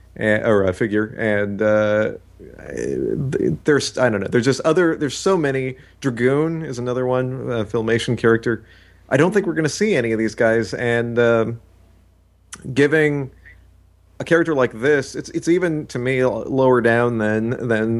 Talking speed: 165 wpm